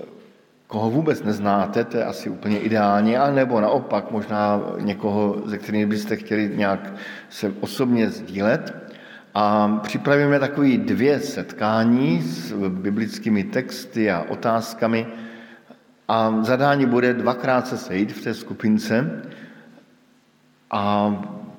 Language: Slovak